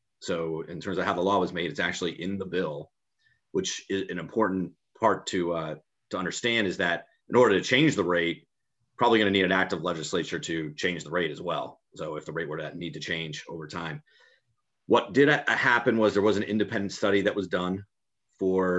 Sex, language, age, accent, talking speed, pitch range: male, English, 30-49, American, 215 wpm, 85-105 Hz